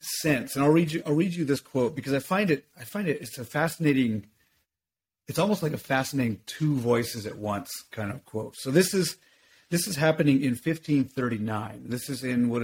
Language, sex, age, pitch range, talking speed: English, male, 30-49, 115-150 Hz, 210 wpm